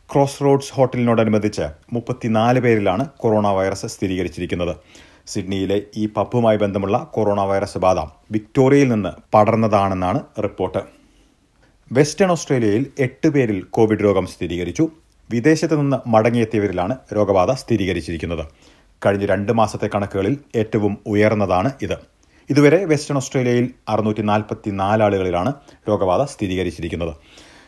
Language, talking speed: Malayalam, 100 wpm